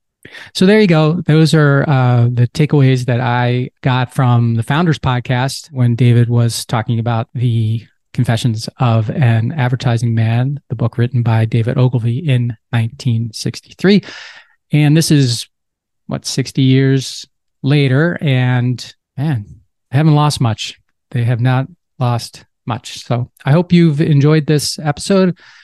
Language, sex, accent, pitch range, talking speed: English, male, American, 120-150 Hz, 140 wpm